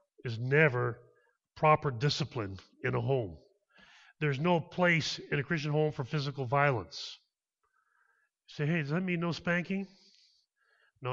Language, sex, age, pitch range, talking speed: English, male, 30-49, 115-180 Hz, 140 wpm